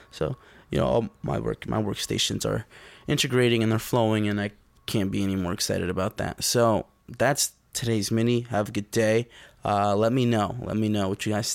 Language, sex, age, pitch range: English, male, 20-39, 100-125 Hz